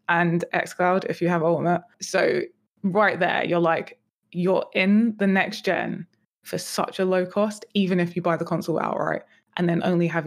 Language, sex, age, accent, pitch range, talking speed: English, female, 20-39, British, 175-205 Hz, 185 wpm